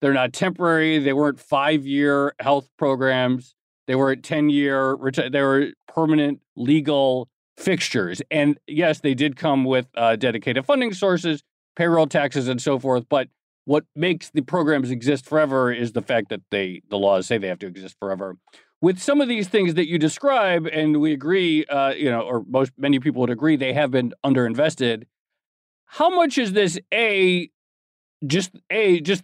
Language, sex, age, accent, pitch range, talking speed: English, male, 40-59, American, 130-170 Hz, 170 wpm